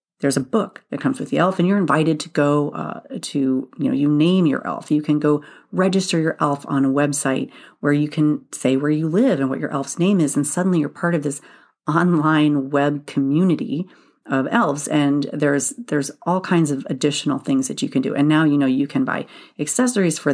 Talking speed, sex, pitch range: 220 wpm, female, 145-180 Hz